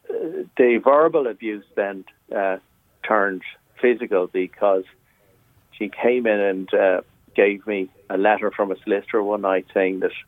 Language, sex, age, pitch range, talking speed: English, male, 50-69, 95-115 Hz, 140 wpm